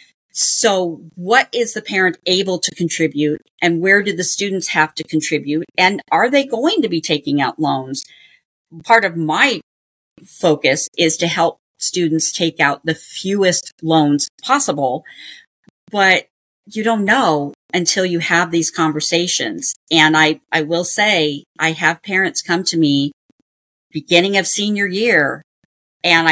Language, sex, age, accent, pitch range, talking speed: English, female, 40-59, American, 155-185 Hz, 145 wpm